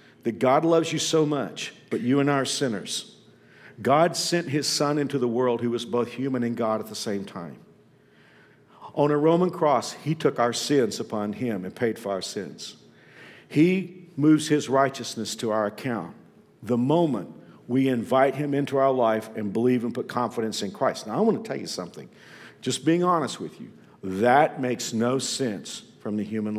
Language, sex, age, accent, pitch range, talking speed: English, male, 50-69, American, 125-185 Hz, 190 wpm